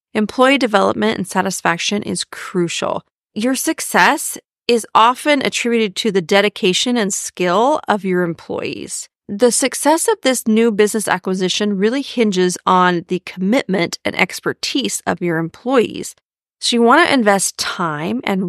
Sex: female